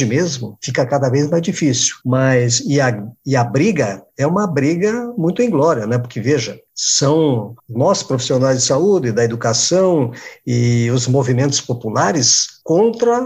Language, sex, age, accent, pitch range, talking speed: Portuguese, male, 50-69, Brazilian, 120-175 Hz, 145 wpm